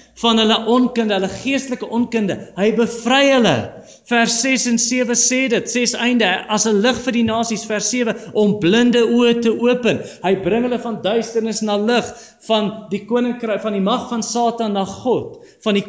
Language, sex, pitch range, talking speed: English, male, 180-235 Hz, 185 wpm